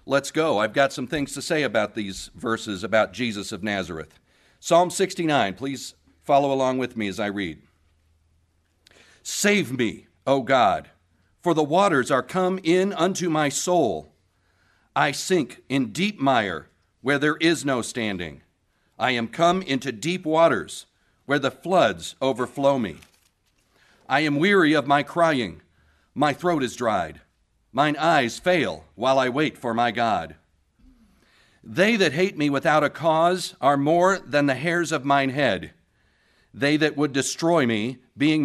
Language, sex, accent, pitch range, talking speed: English, male, American, 110-150 Hz, 155 wpm